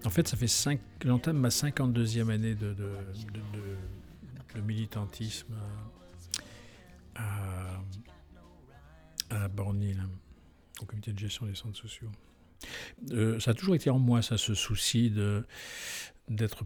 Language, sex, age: French, male, 50-69